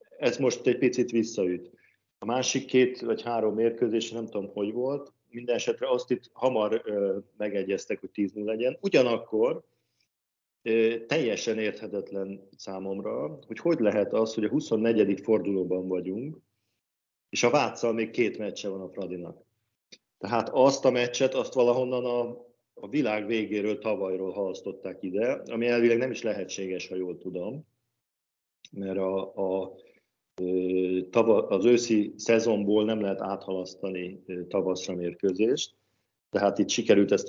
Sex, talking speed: male, 135 wpm